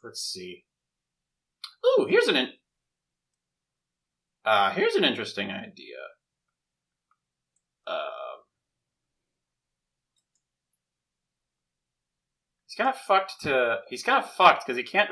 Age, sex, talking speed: 30-49, male, 95 wpm